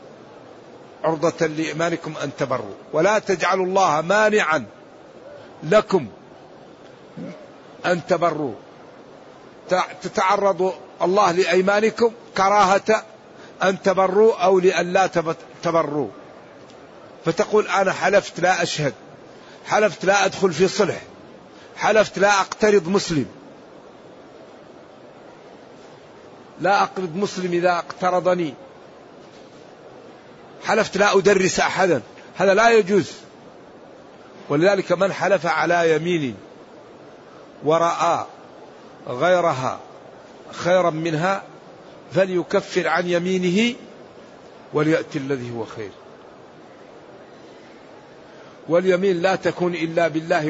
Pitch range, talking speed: 160-195 Hz, 80 wpm